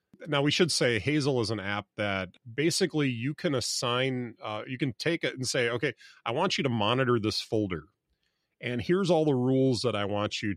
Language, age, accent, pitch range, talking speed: English, 30-49, American, 100-135 Hz, 210 wpm